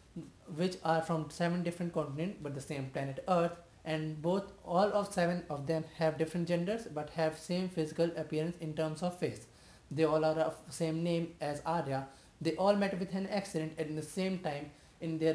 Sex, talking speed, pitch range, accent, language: male, 195 wpm, 155-175 Hz, Indian, English